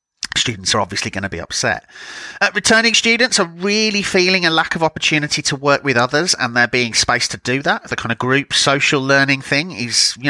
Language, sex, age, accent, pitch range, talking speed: English, male, 30-49, British, 115-160 Hz, 215 wpm